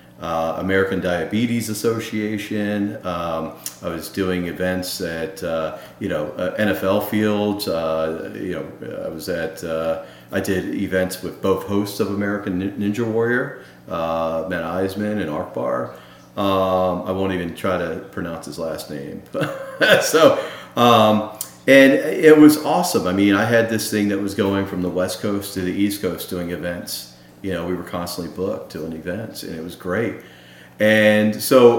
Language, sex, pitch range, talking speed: English, male, 85-100 Hz, 165 wpm